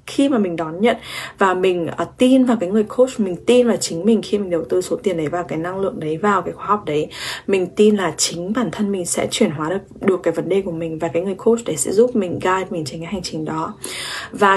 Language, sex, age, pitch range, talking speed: English, female, 20-39, 175-235 Hz, 275 wpm